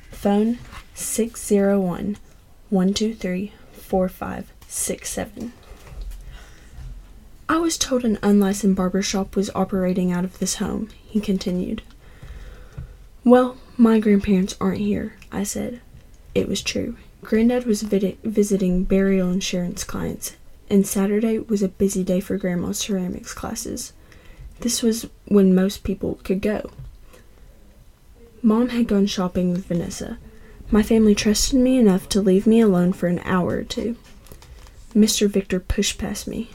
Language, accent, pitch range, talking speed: English, American, 185-220 Hz, 120 wpm